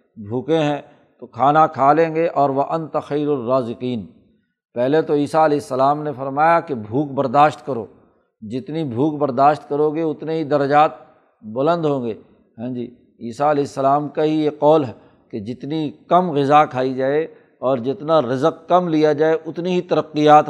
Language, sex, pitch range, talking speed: Urdu, male, 135-155 Hz, 175 wpm